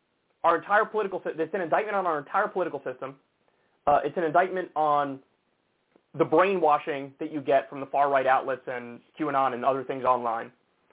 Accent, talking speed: American, 170 wpm